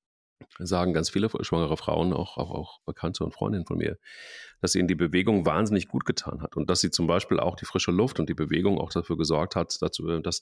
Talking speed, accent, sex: 220 wpm, German, male